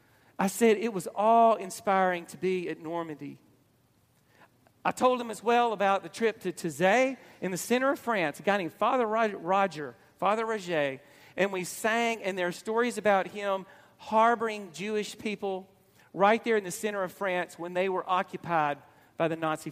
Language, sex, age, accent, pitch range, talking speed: English, male, 40-59, American, 160-215 Hz, 175 wpm